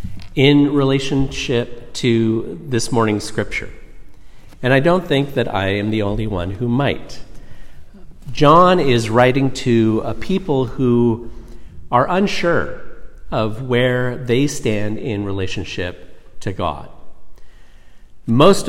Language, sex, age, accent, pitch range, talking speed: English, male, 50-69, American, 115-145 Hz, 115 wpm